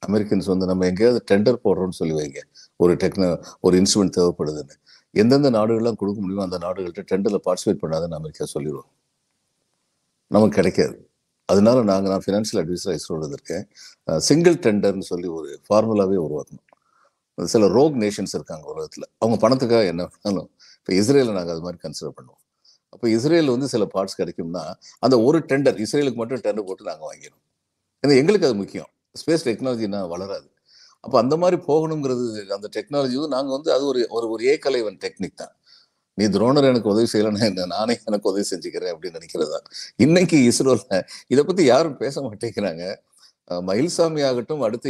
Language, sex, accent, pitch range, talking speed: Tamil, male, native, 95-140 Hz, 150 wpm